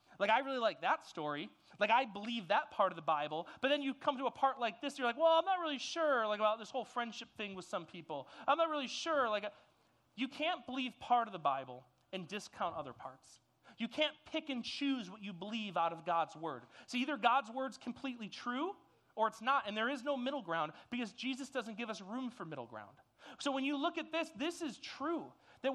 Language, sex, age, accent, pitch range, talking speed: English, male, 30-49, American, 190-250 Hz, 235 wpm